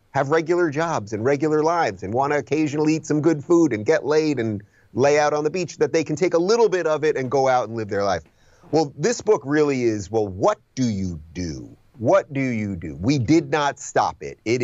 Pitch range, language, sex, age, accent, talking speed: 110-150 Hz, English, male, 30-49, American, 240 wpm